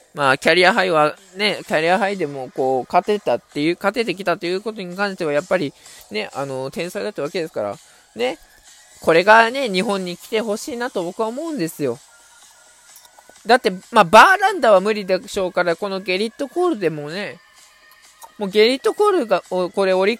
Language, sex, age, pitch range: Japanese, male, 20-39, 150-220 Hz